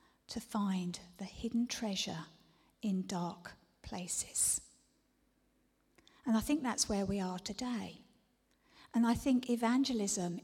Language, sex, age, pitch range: English, female, 50-69, 200-245 Hz